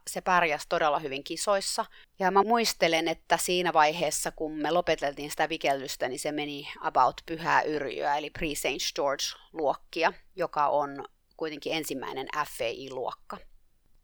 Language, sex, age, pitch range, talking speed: Finnish, female, 30-49, 150-185 Hz, 130 wpm